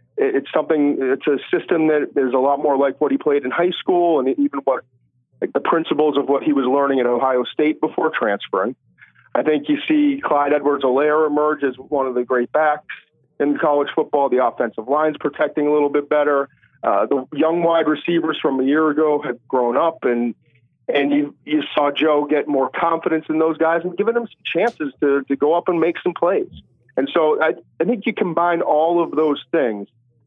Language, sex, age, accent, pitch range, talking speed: English, male, 40-59, American, 135-160 Hz, 210 wpm